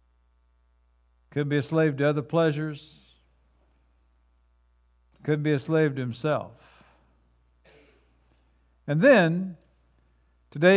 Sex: male